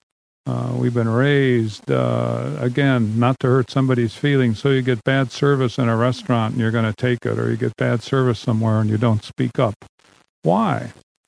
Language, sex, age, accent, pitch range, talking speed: English, male, 50-69, American, 120-145 Hz, 195 wpm